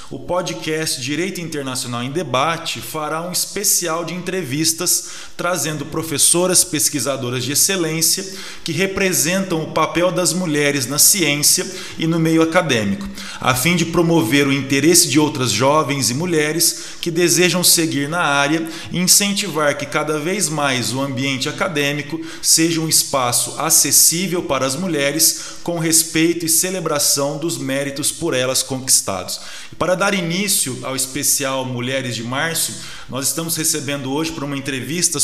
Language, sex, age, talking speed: Portuguese, male, 20-39, 145 wpm